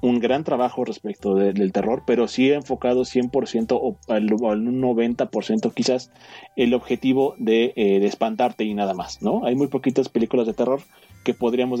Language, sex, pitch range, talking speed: Spanish, male, 110-130 Hz, 180 wpm